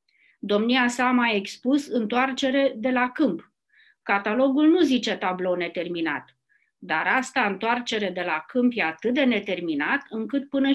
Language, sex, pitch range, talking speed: Romanian, female, 200-270 Hz, 140 wpm